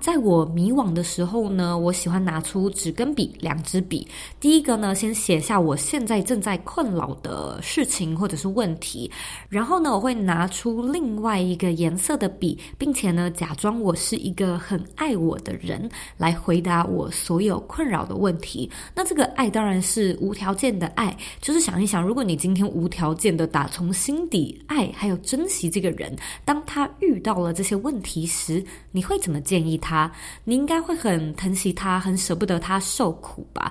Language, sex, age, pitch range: Chinese, female, 20-39, 170-225 Hz